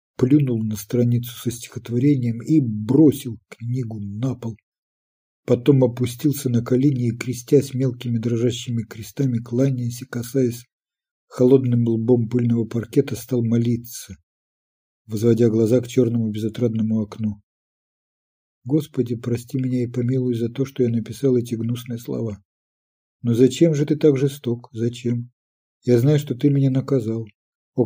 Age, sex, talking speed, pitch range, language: 50-69, male, 130 wpm, 115-135 Hz, Ukrainian